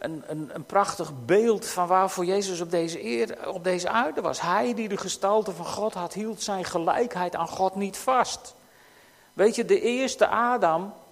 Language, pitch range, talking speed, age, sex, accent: Dutch, 190-250 Hz, 175 wpm, 50-69, male, Dutch